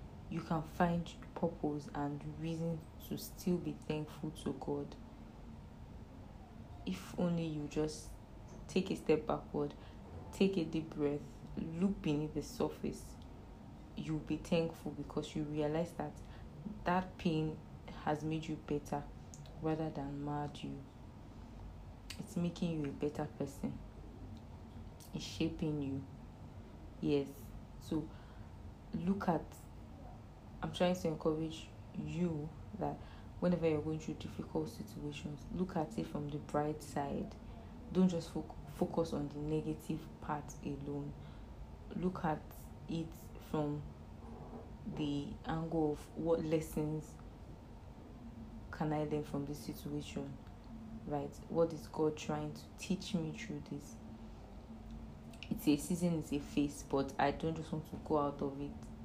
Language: English